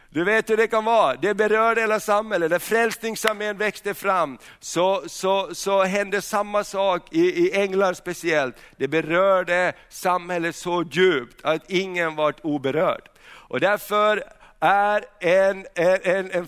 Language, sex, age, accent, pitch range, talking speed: Swedish, male, 60-79, native, 175-205 Hz, 140 wpm